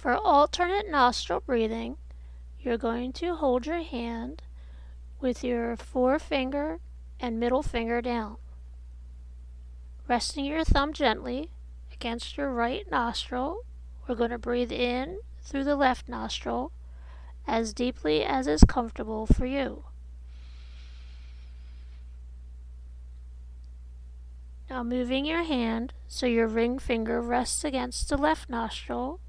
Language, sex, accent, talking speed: English, female, American, 110 wpm